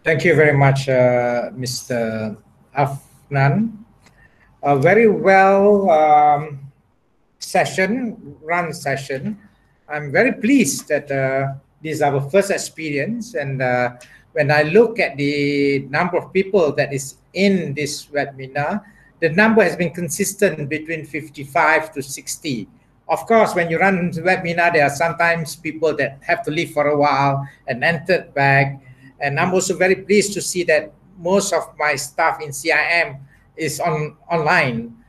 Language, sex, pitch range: Malay, male, 140-190 Hz